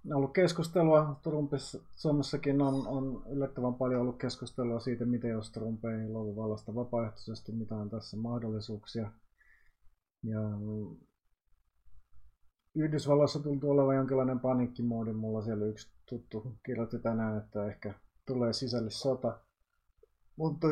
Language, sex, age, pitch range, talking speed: Finnish, male, 30-49, 110-135 Hz, 105 wpm